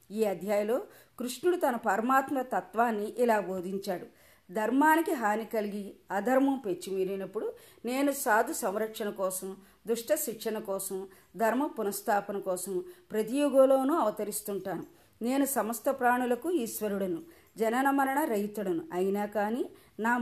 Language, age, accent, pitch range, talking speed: Telugu, 40-59, native, 200-255 Hz, 95 wpm